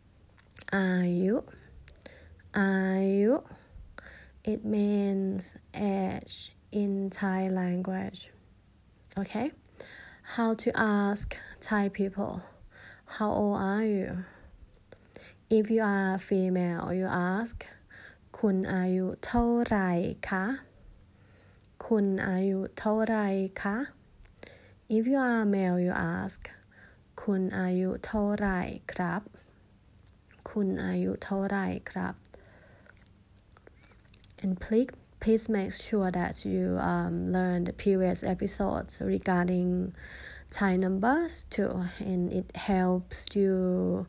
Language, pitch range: Thai, 140-200 Hz